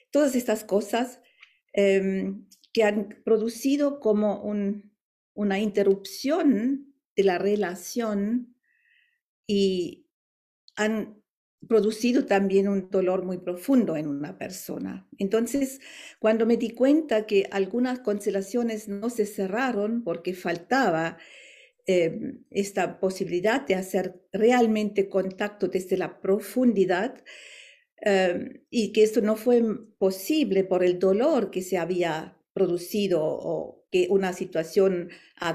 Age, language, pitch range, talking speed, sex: 50-69, Spanish, 185-230 Hz, 110 wpm, female